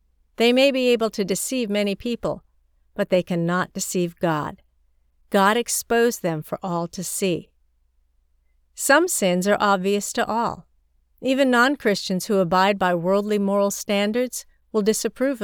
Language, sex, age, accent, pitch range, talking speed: English, female, 50-69, American, 150-215 Hz, 140 wpm